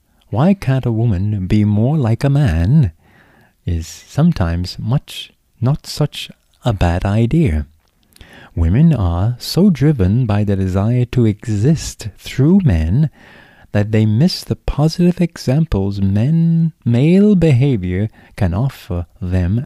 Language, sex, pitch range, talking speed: English, male, 90-130 Hz, 120 wpm